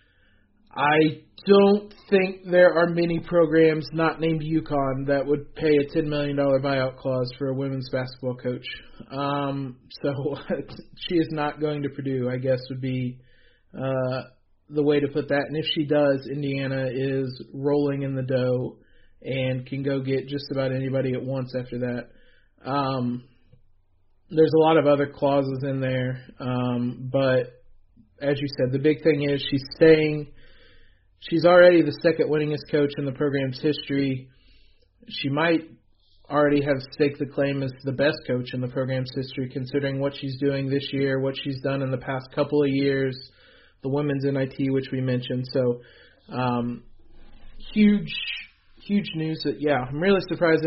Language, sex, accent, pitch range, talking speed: English, male, American, 130-155 Hz, 165 wpm